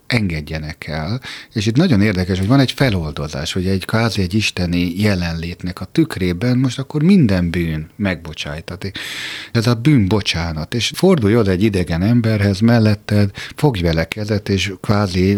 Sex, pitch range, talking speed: male, 85-120 Hz, 140 wpm